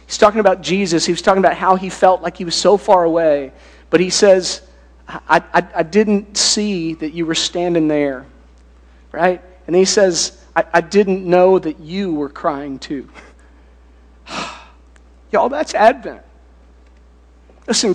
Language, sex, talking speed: English, male, 155 wpm